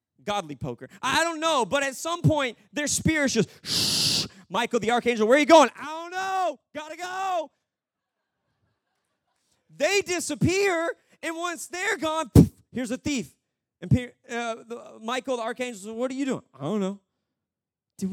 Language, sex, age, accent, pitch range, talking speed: English, male, 30-49, American, 180-300 Hz, 165 wpm